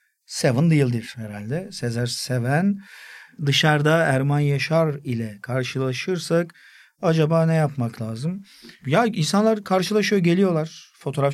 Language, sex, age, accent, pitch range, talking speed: Turkish, male, 50-69, native, 125-160 Hz, 100 wpm